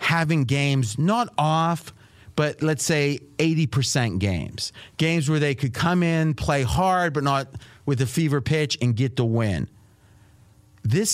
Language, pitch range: English, 120-160 Hz